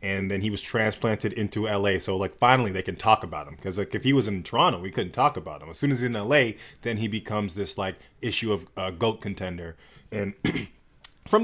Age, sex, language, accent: 20-39, male, English, American